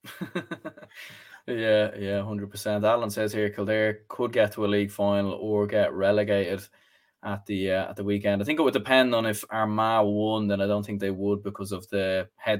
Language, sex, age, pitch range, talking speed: English, male, 20-39, 105-125 Hz, 200 wpm